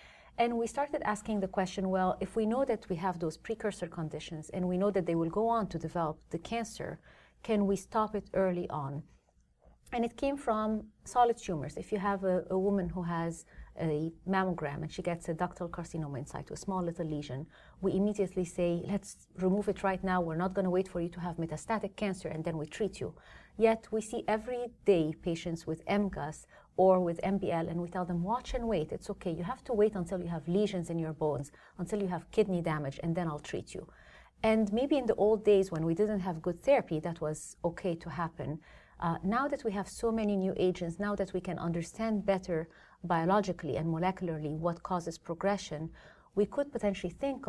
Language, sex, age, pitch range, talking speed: English, female, 30-49, 165-205 Hz, 215 wpm